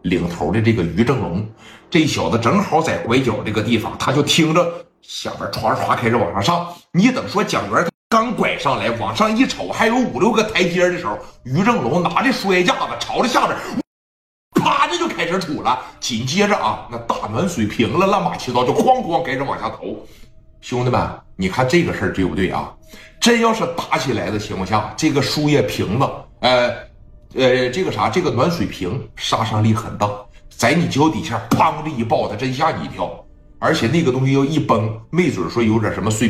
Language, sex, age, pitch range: Chinese, male, 60-79, 105-165 Hz